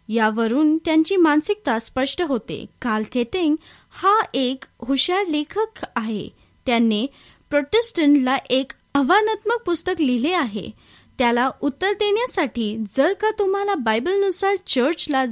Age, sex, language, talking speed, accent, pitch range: 20-39, female, Marathi, 105 wpm, native, 245-370 Hz